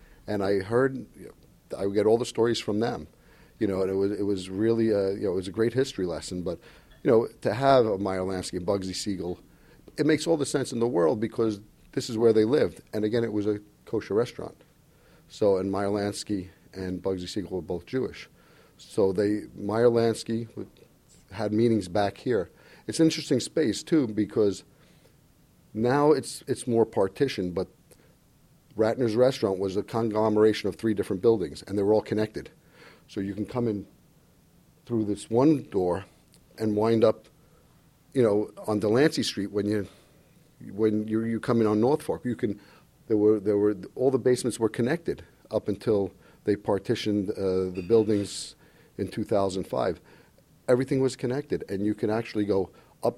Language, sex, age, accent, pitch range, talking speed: English, male, 50-69, American, 100-125 Hz, 185 wpm